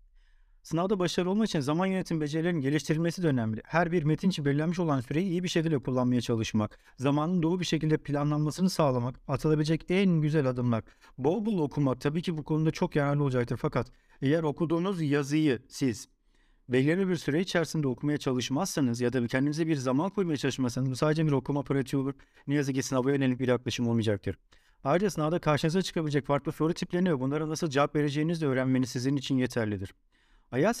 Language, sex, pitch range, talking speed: English, male, 130-170 Hz, 175 wpm